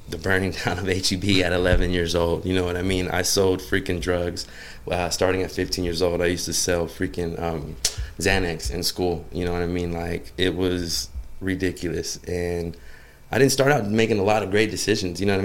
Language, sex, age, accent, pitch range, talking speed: English, male, 20-39, American, 85-95 Hz, 220 wpm